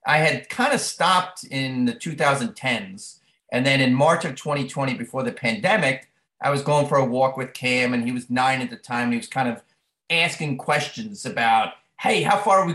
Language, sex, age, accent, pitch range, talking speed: English, male, 30-49, American, 125-155 Hz, 210 wpm